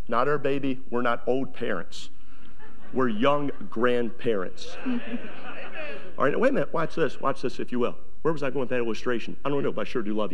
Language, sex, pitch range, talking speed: English, male, 130-180 Hz, 215 wpm